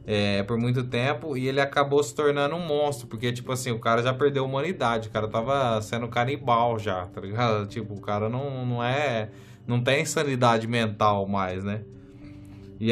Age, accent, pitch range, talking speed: 20-39, Brazilian, 115-145 Hz, 185 wpm